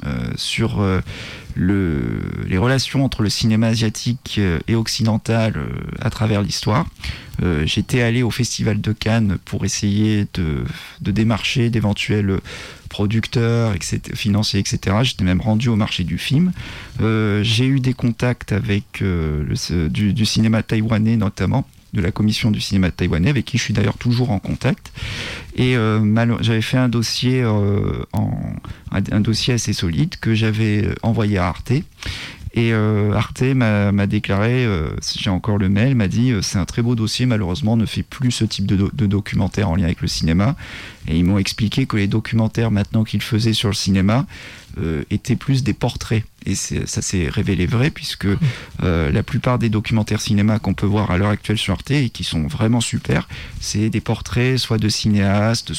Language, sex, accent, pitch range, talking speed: French, male, French, 100-115 Hz, 185 wpm